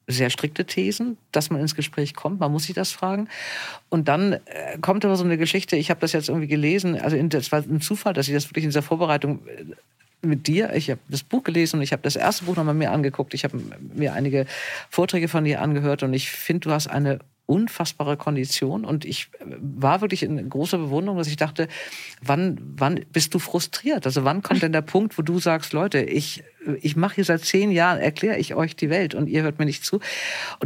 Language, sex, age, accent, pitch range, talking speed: German, female, 50-69, German, 145-180 Hz, 225 wpm